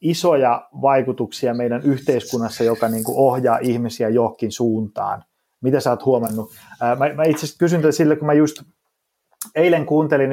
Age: 30-49